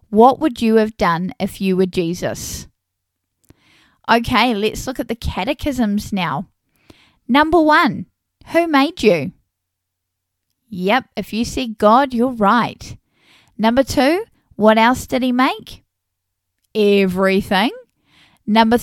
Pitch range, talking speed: 185-260 Hz, 120 wpm